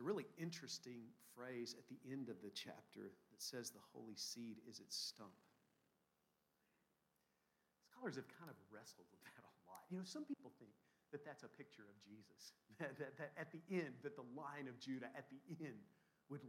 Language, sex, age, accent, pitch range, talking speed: English, male, 50-69, American, 100-150 Hz, 195 wpm